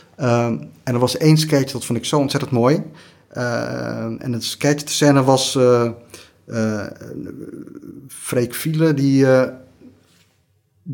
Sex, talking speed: male, 135 wpm